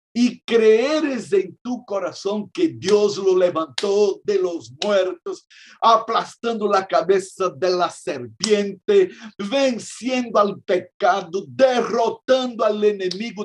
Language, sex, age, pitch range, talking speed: Spanish, male, 60-79, 185-245 Hz, 105 wpm